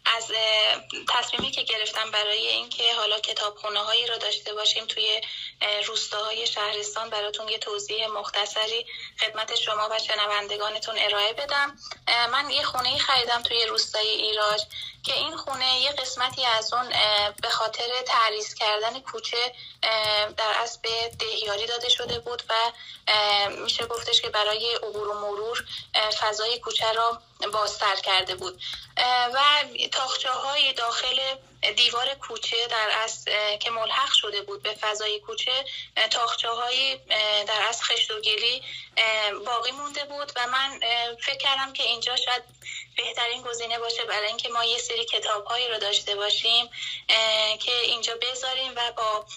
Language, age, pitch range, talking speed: Persian, 10-29, 215-240 Hz, 135 wpm